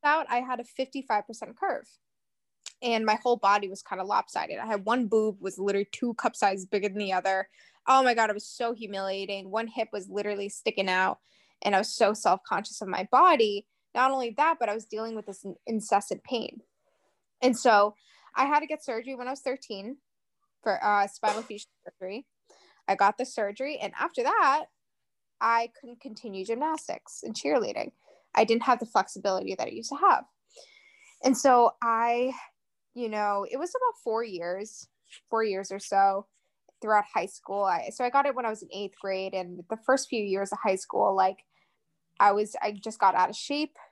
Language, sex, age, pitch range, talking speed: English, female, 10-29, 200-260 Hz, 195 wpm